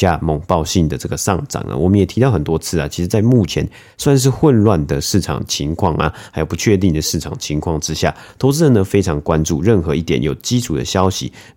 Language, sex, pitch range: Chinese, male, 80-100 Hz